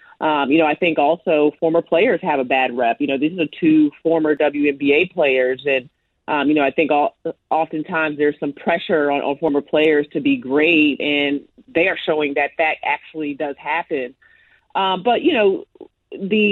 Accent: American